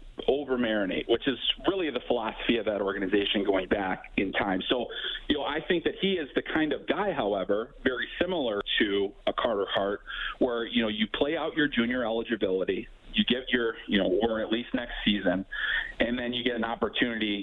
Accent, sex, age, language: American, male, 40-59, English